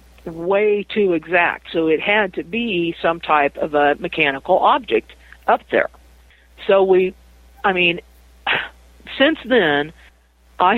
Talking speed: 130 wpm